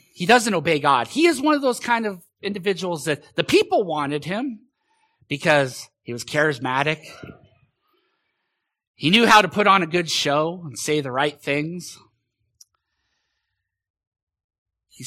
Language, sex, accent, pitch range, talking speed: English, male, American, 135-195 Hz, 145 wpm